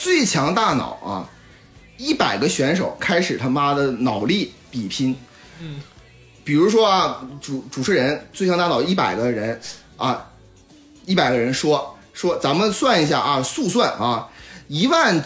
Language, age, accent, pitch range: Chinese, 30-49, native, 140-230 Hz